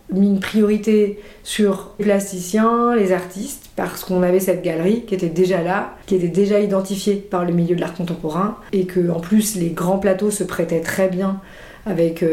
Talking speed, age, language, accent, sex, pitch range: 185 wpm, 40-59, French, French, female, 175-200 Hz